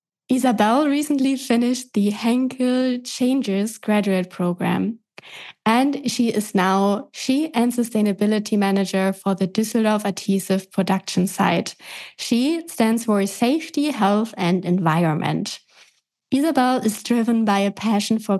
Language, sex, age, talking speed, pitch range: English, female, 20-39, 115 wpm, 195-245 Hz